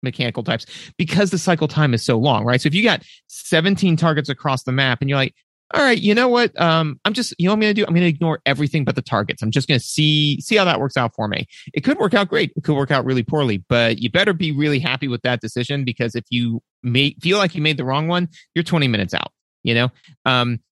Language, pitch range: English, 125-170 Hz